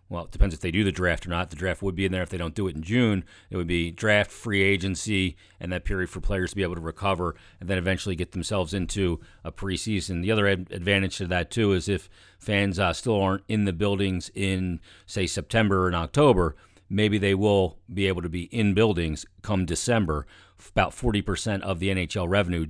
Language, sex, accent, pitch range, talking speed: English, male, American, 90-100 Hz, 225 wpm